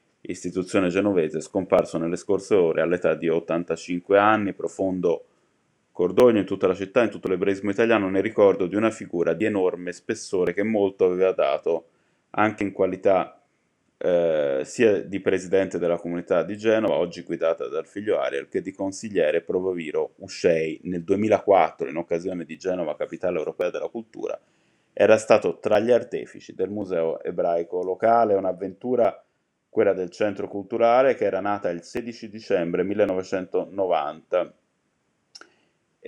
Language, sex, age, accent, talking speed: Italian, male, 20-39, native, 140 wpm